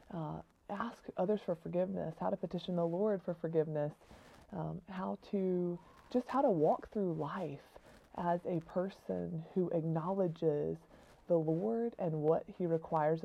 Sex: female